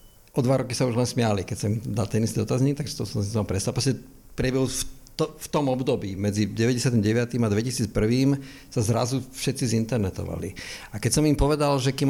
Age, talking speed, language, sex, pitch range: 50-69, 190 wpm, Slovak, male, 110-130 Hz